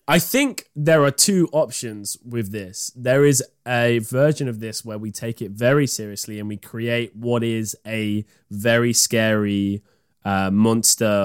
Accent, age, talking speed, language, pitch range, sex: British, 20-39, 160 wpm, English, 110-145 Hz, male